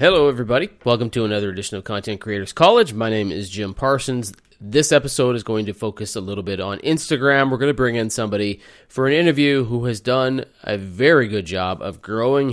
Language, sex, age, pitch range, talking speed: English, male, 30-49, 105-130 Hz, 210 wpm